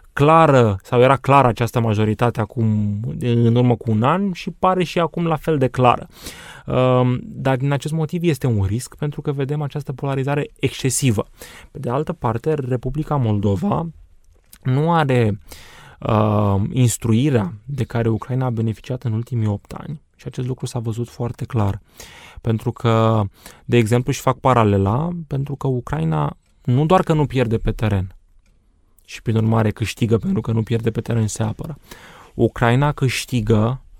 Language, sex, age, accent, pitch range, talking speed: Romanian, male, 20-39, native, 115-135 Hz, 160 wpm